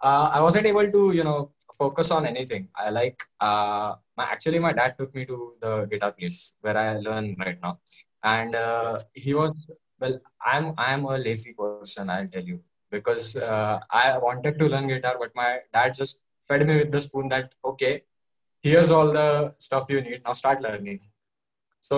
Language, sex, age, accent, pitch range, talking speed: English, male, 20-39, Indian, 110-155 Hz, 190 wpm